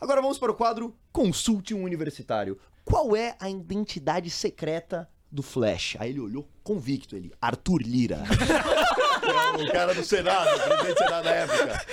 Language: Portuguese